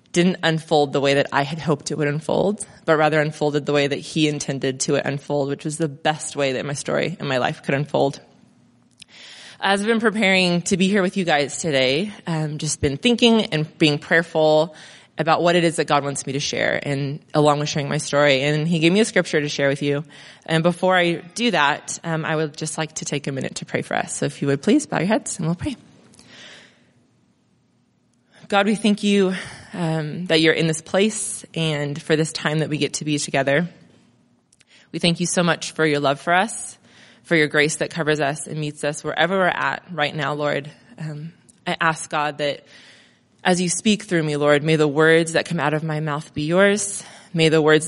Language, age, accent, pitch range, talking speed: English, 20-39, American, 145-175 Hz, 225 wpm